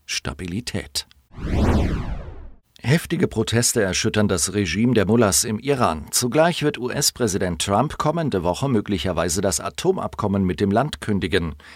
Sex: male